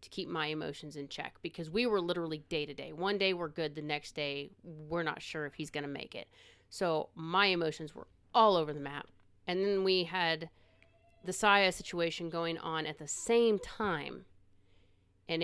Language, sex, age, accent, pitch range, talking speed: English, female, 30-49, American, 150-185 Hz, 200 wpm